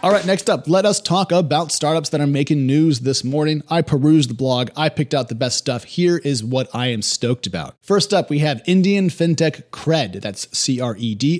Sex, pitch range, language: male, 115-160 Hz, English